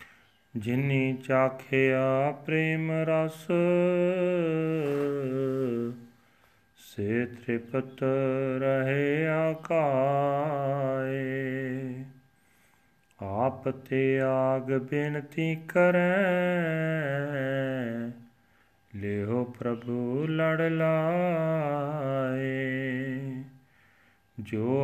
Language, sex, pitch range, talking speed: Punjabi, male, 125-160 Hz, 40 wpm